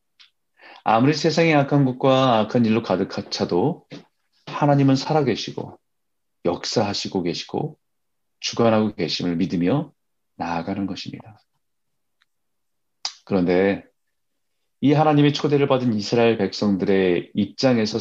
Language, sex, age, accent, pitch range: Korean, male, 40-59, native, 95-125 Hz